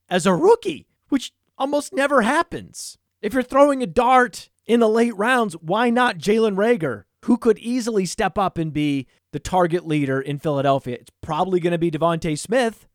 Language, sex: English, male